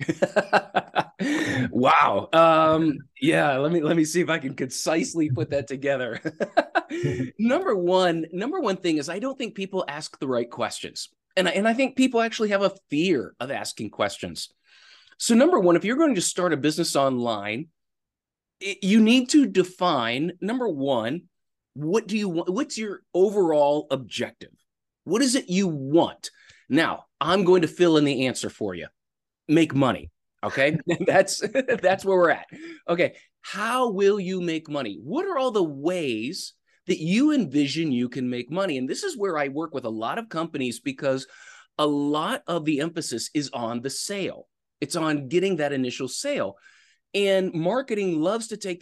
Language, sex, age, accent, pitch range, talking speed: English, male, 20-39, American, 140-200 Hz, 170 wpm